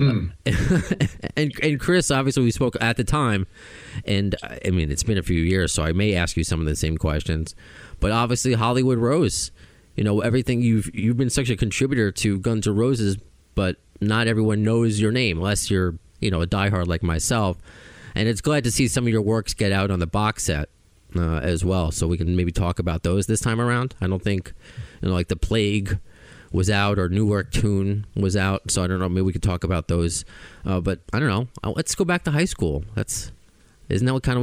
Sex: male